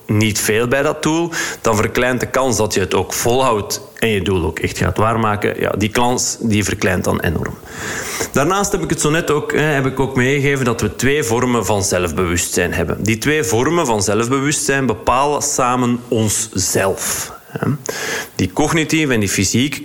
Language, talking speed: Dutch, 180 wpm